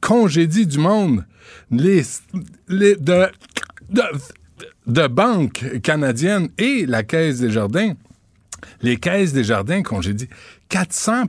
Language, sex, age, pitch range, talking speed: French, male, 60-79, 115-175 Hz, 110 wpm